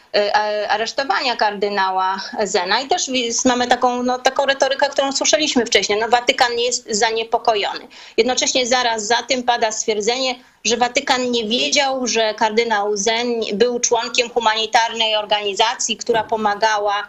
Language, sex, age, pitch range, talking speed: Polish, female, 20-39, 220-265 Hz, 125 wpm